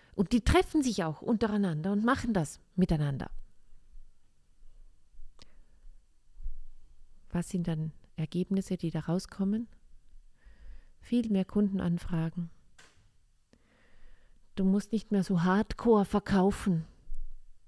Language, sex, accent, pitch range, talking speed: German, female, German, 135-190 Hz, 90 wpm